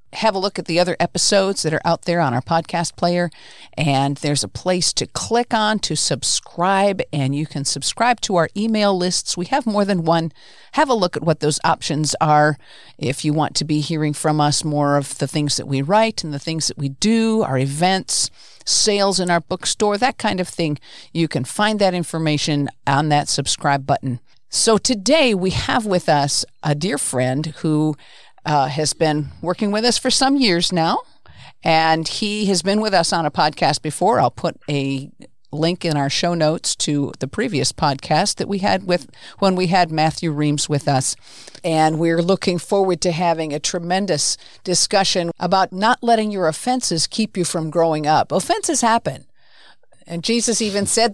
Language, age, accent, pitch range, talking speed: English, 50-69, American, 150-205 Hz, 190 wpm